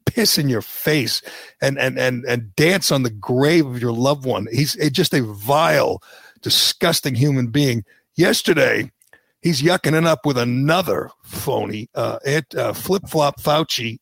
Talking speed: 155 wpm